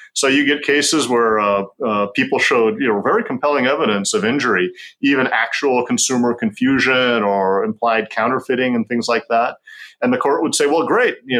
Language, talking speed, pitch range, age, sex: English, 185 wpm, 105-145 Hz, 40-59, male